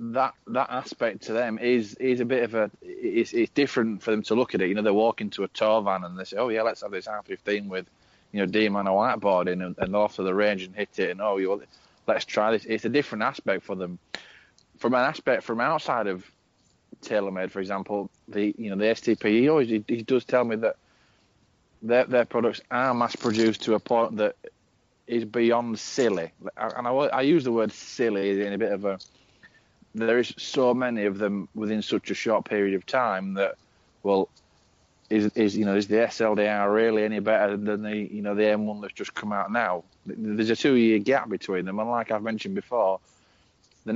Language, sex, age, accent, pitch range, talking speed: English, male, 20-39, British, 100-115 Hz, 220 wpm